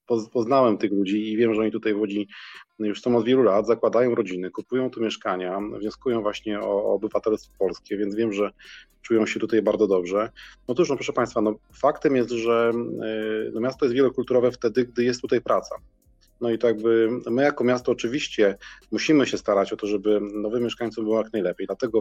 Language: Polish